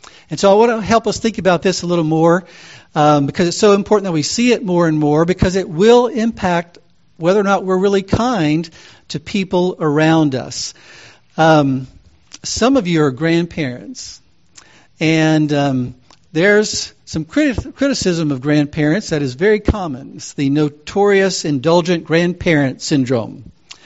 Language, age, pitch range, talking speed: English, 50-69, 150-190 Hz, 155 wpm